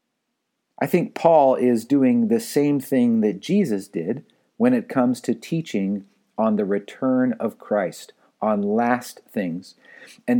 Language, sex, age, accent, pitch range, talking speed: English, male, 50-69, American, 110-165 Hz, 145 wpm